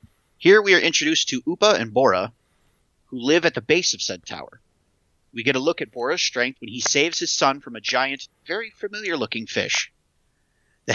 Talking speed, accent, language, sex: 190 wpm, American, English, male